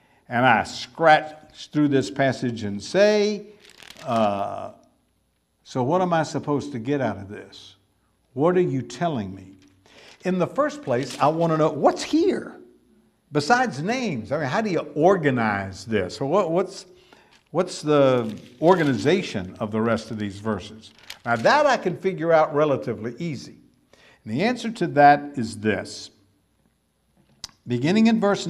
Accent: American